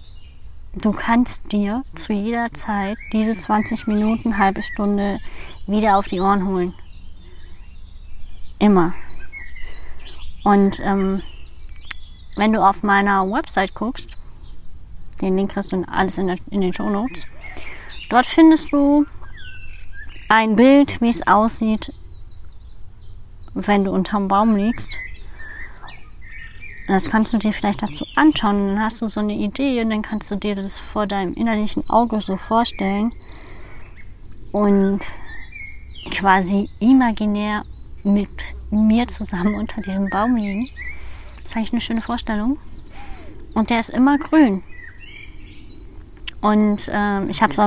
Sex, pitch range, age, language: female, 180-220 Hz, 20-39, German